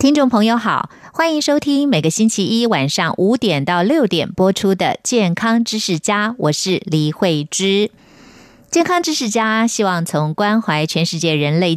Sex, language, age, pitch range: female, Chinese, 30-49, 160-225 Hz